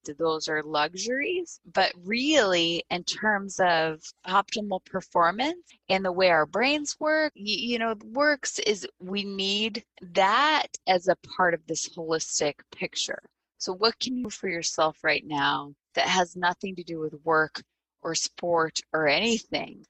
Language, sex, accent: English, female, American